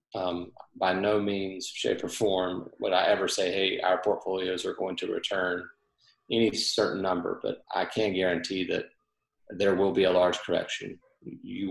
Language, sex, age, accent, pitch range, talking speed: English, male, 30-49, American, 90-100 Hz, 170 wpm